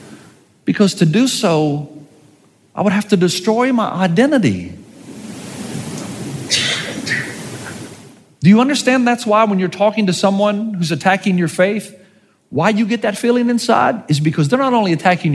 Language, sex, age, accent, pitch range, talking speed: English, male, 40-59, American, 185-255 Hz, 145 wpm